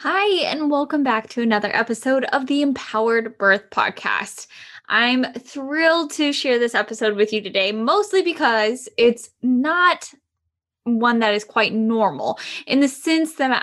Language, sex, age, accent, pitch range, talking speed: English, female, 10-29, American, 225-285 Hz, 150 wpm